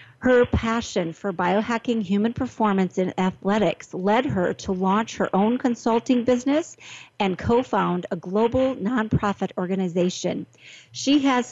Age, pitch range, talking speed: 50-69, 185-230 Hz, 130 wpm